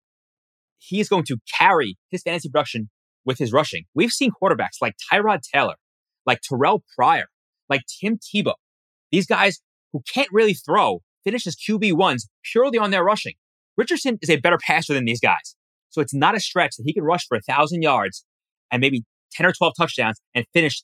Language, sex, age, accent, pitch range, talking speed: English, male, 30-49, American, 125-165 Hz, 190 wpm